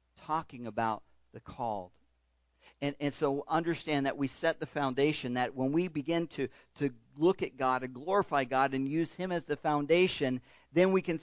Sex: male